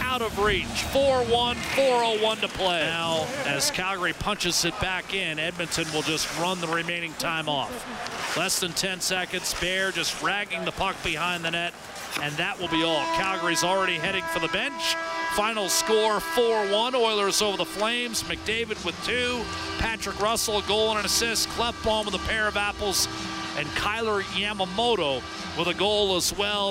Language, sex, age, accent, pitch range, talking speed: English, male, 40-59, American, 170-220 Hz, 170 wpm